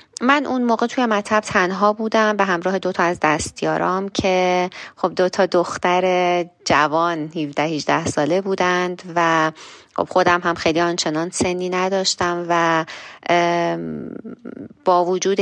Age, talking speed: 30-49, 115 wpm